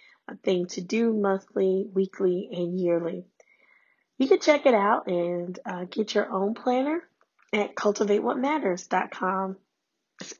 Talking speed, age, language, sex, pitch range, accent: 125 wpm, 10-29, English, female, 180-220 Hz, American